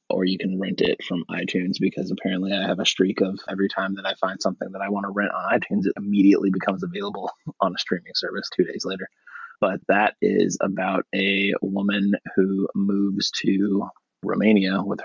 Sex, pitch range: male, 95-100 Hz